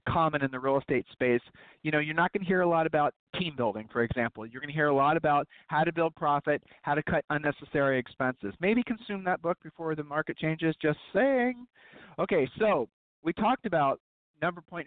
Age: 40-59